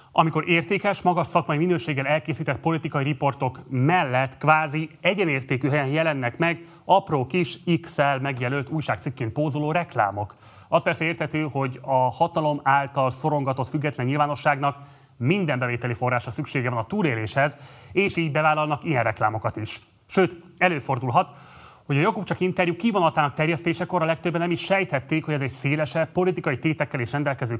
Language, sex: Hungarian, male